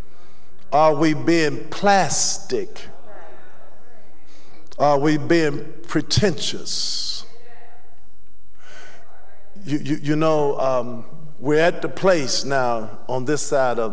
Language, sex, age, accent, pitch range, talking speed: English, male, 50-69, American, 115-135 Hz, 95 wpm